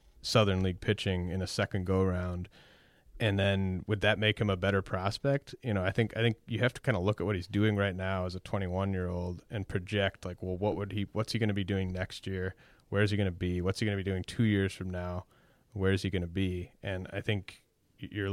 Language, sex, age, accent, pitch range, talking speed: English, male, 30-49, American, 95-105 Hz, 260 wpm